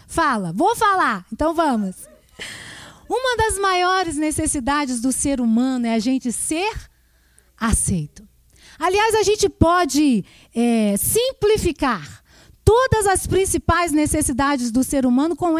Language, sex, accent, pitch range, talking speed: Portuguese, female, Brazilian, 250-375 Hz, 115 wpm